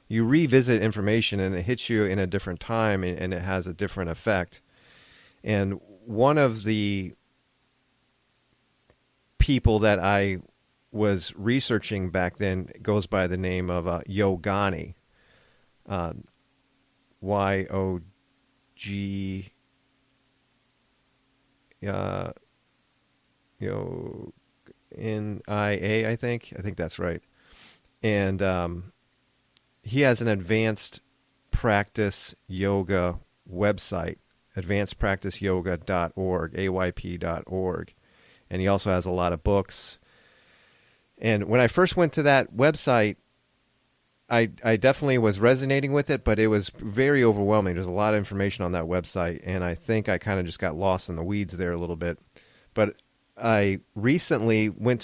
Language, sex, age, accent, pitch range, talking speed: English, male, 40-59, American, 95-125 Hz, 130 wpm